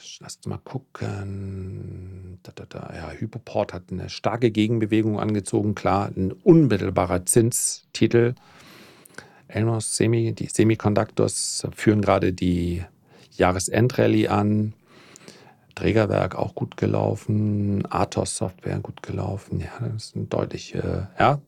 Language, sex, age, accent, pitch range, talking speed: German, male, 40-59, German, 100-125 Hz, 115 wpm